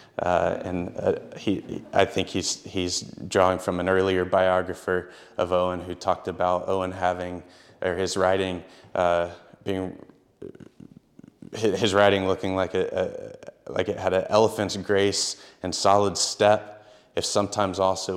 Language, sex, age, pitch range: English, male, 20-39, 90-100 Hz